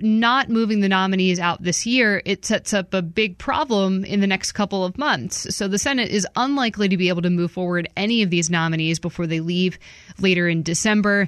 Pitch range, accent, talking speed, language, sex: 175-215 Hz, American, 215 wpm, English, female